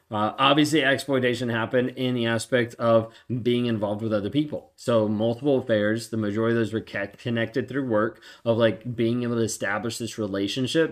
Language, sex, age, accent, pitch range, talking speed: English, male, 20-39, American, 110-135 Hz, 175 wpm